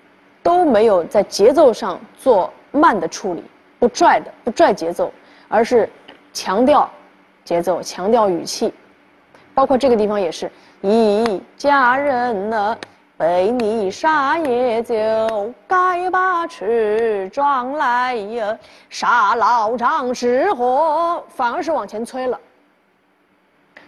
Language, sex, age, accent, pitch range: Chinese, female, 20-39, native, 225-300 Hz